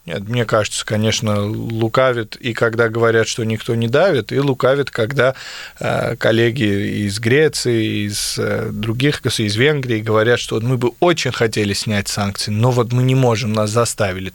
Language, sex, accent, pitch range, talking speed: Russian, male, native, 110-130 Hz, 150 wpm